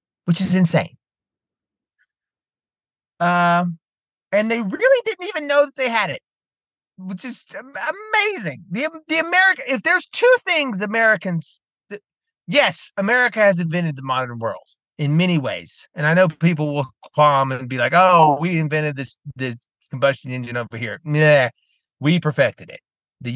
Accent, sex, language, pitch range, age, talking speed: American, male, English, 130-195 Hz, 30-49, 150 wpm